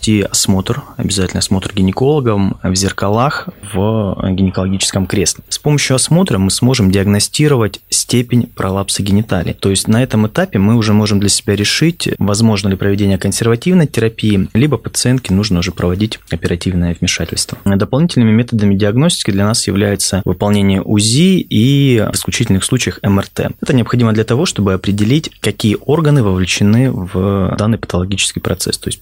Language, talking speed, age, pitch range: Russian, 145 wpm, 20-39, 95-120 Hz